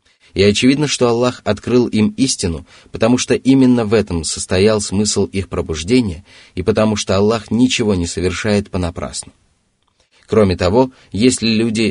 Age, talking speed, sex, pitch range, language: 30-49, 140 wpm, male, 90-110 Hz, Russian